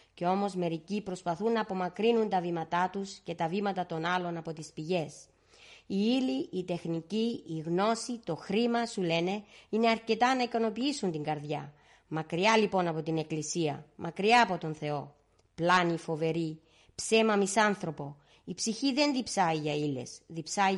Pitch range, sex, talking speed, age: 170-220 Hz, female, 155 wpm, 30-49